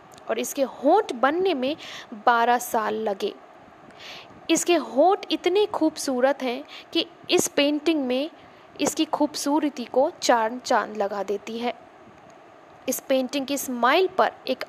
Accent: native